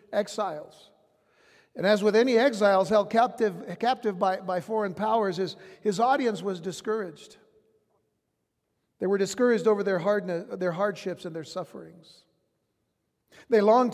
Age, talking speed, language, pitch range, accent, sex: 60-79, 135 wpm, English, 195-235 Hz, American, male